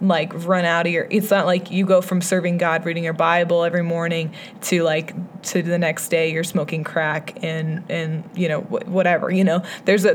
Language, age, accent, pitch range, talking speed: English, 20-39, American, 170-200 Hz, 215 wpm